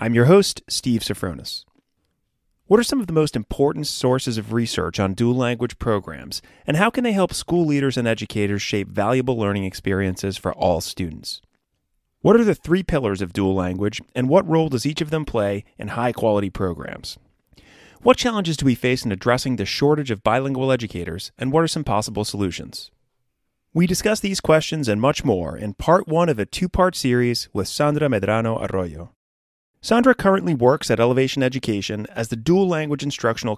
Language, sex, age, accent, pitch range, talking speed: English, male, 30-49, American, 105-155 Hz, 180 wpm